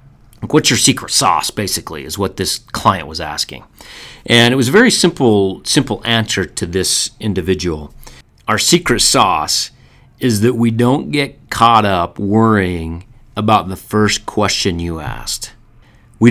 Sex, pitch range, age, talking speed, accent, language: male, 95-120 Hz, 40-59, 145 wpm, American, English